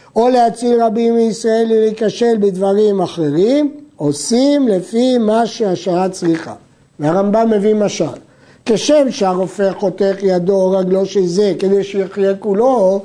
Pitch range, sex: 185-240 Hz, male